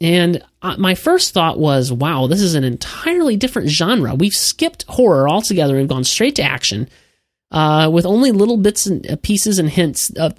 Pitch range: 135-190 Hz